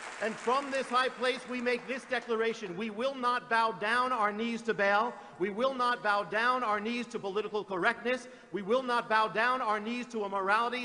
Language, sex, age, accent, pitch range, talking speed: English, male, 50-69, American, 200-235 Hz, 210 wpm